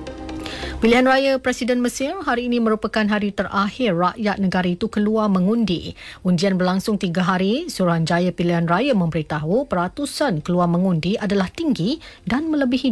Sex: female